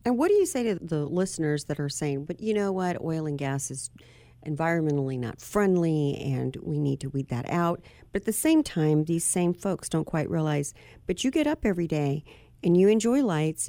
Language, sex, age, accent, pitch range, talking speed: English, female, 50-69, American, 150-200 Hz, 220 wpm